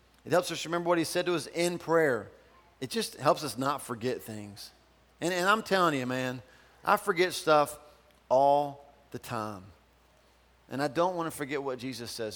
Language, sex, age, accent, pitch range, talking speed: English, male, 40-59, American, 125-165 Hz, 190 wpm